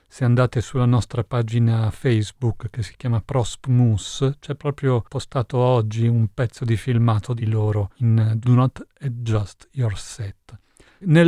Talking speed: 145 wpm